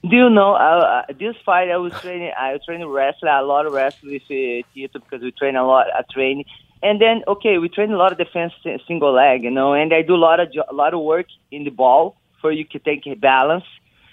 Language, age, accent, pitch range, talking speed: English, 20-39, Brazilian, 150-200 Hz, 260 wpm